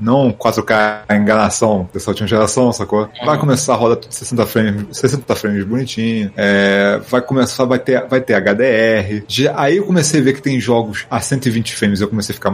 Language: Portuguese